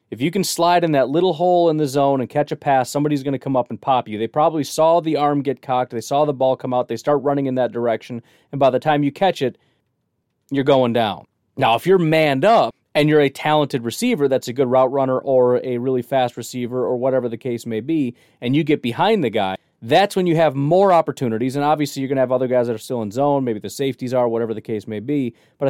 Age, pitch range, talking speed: 30-49, 125-150 Hz, 265 wpm